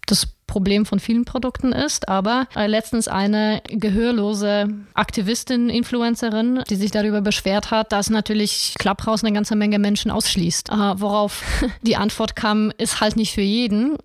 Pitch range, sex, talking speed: 205-225 Hz, female, 155 wpm